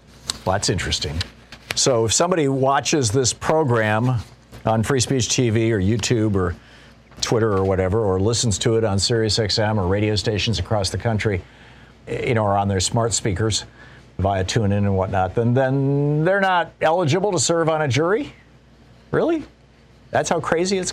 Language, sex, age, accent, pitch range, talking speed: English, male, 50-69, American, 105-135 Hz, 170 wpm